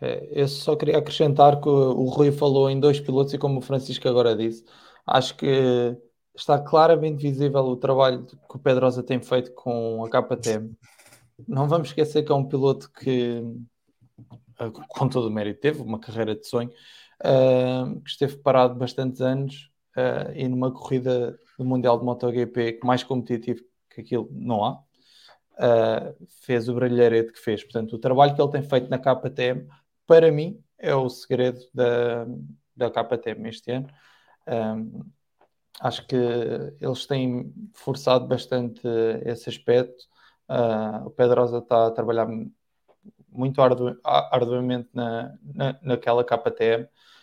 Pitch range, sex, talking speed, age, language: 120-135 Hz, male, 145 wpm, 20-39, English